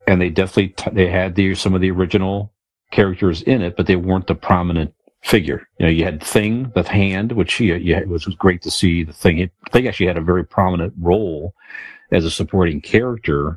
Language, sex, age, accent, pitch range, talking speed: English, male, 50-69, American, 80-95 Hz, 210 wpm